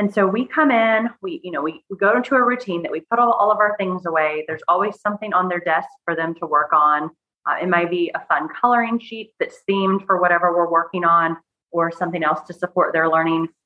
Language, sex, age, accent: English, female, 30-49, American